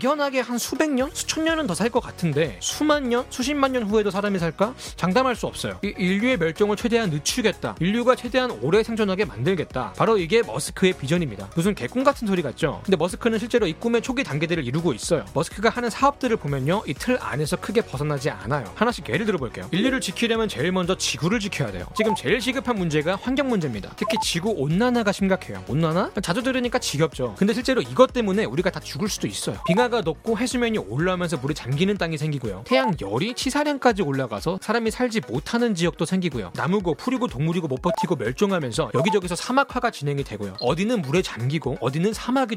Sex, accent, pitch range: male, native, 165-240 Hz